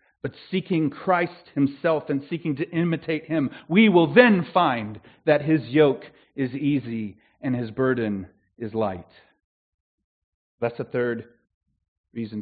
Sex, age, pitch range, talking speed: male, 40-59, 120-190 Hz, 130 wpm